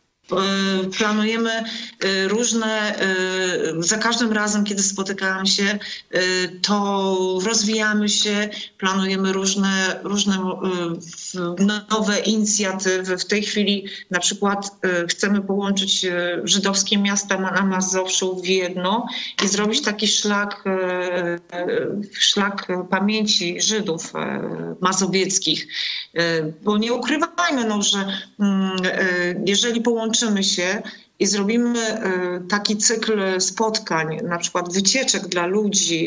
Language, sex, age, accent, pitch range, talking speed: Polish, female, 40-59, native, 185-220 Hz, 95 wpm